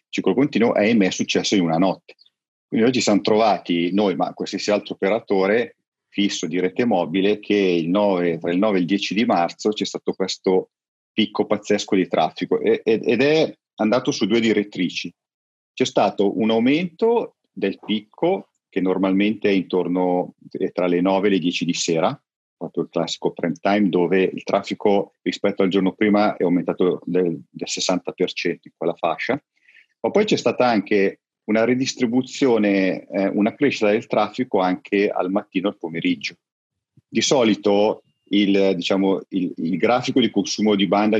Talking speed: 165 wpm